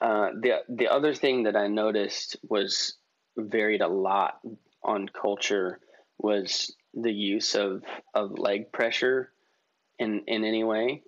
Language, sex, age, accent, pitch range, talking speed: English, male, 20-39, American, 100-115 Hz, 135 wpm